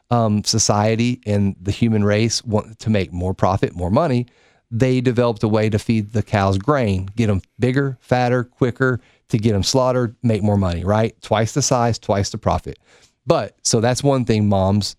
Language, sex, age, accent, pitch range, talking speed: English, male, 40-59, American, 100-125 Hz, 190 wpm